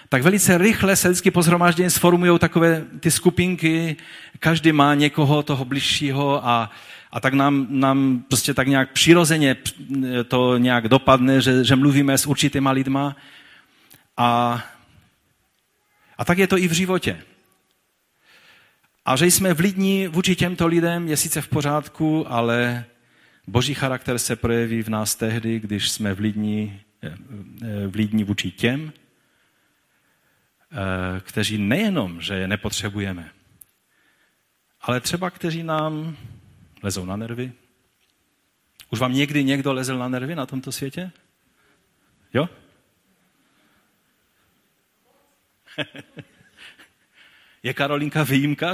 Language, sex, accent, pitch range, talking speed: Czech, male, native, 115-155 Hz, 110 wpm